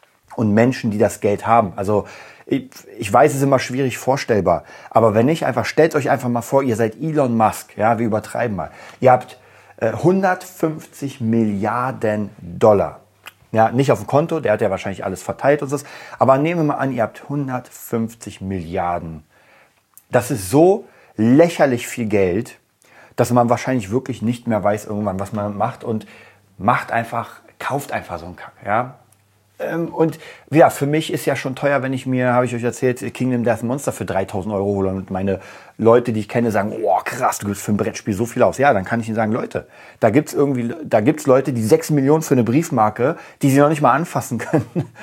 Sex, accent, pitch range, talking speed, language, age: male, German, 105-135 Hz, 200 wpm, German, 30-49